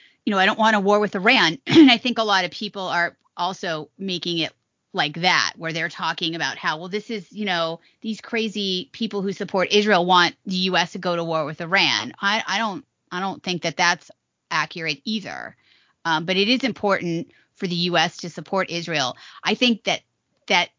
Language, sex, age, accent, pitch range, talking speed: English, female, 30-49, American, 165-210 Hz, 205 wpm